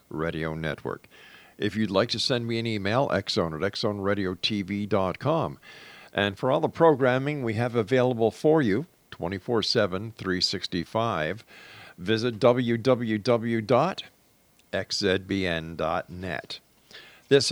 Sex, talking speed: male, 95 wpm